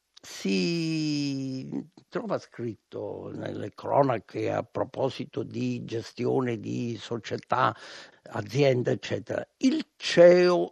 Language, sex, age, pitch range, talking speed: Italian, male, 60-79, 120-155 Hz, 85 wpm